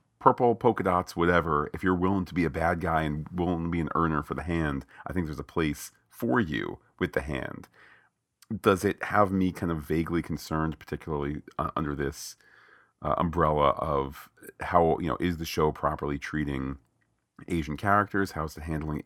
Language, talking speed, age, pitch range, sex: English, 185 wpm, 40-59, 75-100 Hz, male